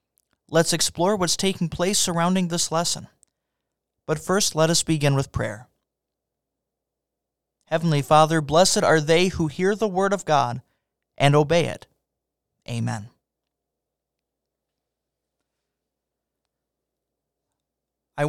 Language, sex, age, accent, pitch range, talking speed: English, male, 30-49, American, 125-165 Hz, 100 wpm